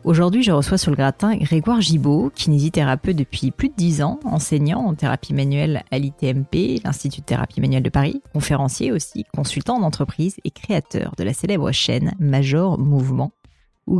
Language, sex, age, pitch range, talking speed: French, female, 30-49, 140-180 Hz, 165 wpm